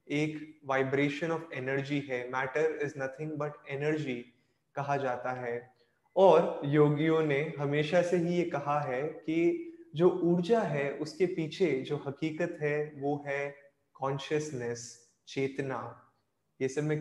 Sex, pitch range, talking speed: male, 135-165 Hz, 135 wpm